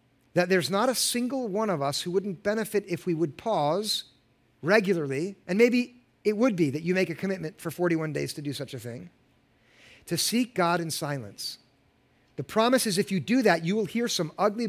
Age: 50-69